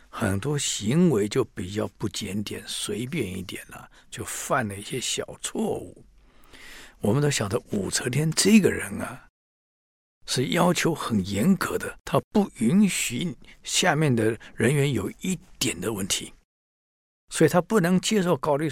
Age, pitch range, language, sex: 60-79, 110-180 Hz, Chinese, male